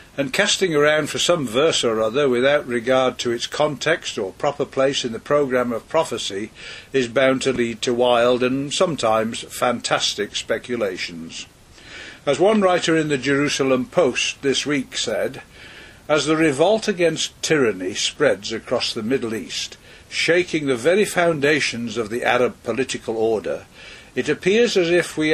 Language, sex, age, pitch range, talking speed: English, male, 60-79, 120-160 Hz, 155 wpm